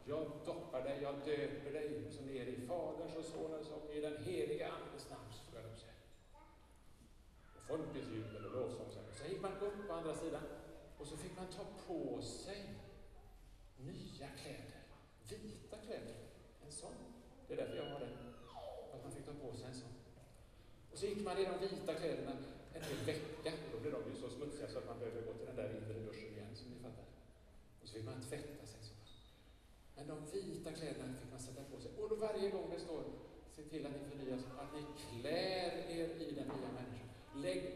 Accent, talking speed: Norwegian, 195 wpm